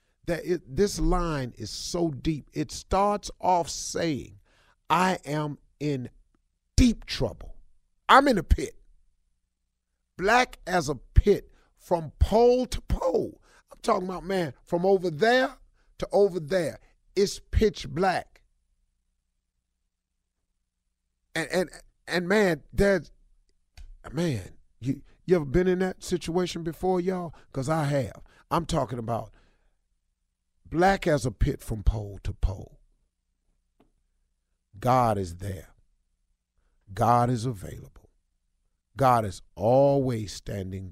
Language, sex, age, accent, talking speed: English, male, 40-59, American, 115 wpm